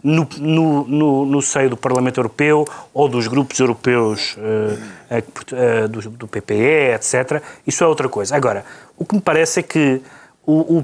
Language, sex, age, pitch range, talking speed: Portuguese, male, 30-49, 125-180 Hz, 170 wpm